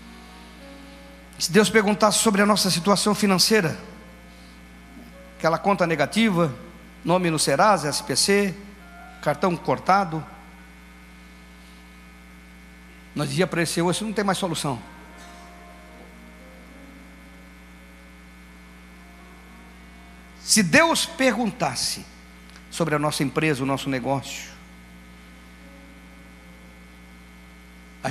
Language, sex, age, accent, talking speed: Portuguese, male, 50-69, Brazilian, 80 wpm